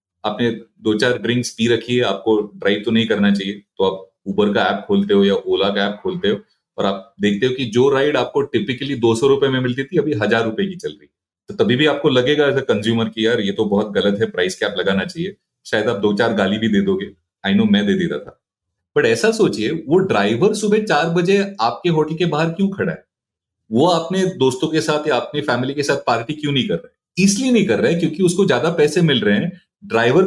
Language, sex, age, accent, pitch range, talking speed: Hindi, male, 30-49, native, 115-185 Hz, 245 wpm